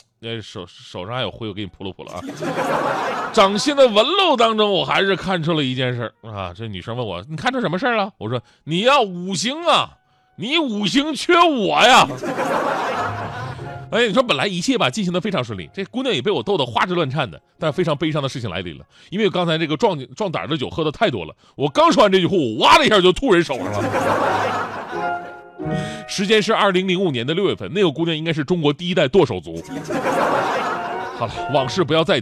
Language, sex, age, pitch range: Chinese, male, 30-49, 125-210 Hz